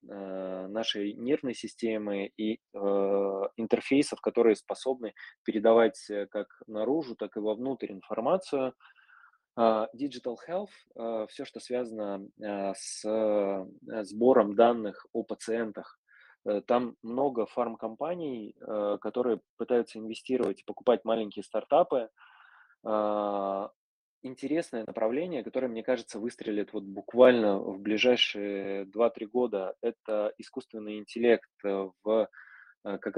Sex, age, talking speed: male, 20-39, 90 wpm